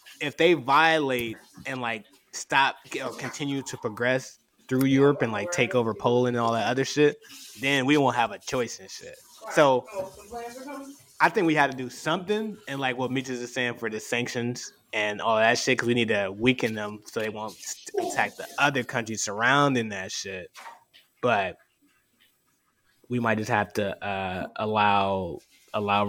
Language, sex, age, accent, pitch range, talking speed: English, male, 20-39, American, 110-135 Hz, 175 wpm